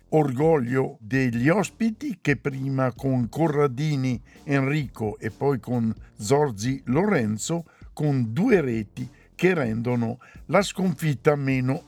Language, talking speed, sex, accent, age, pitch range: Italian, 105 wpm, male, native, 60-79, 120-160 Hz